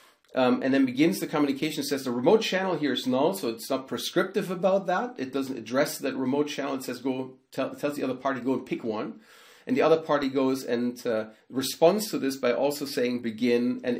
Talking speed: 225 wpm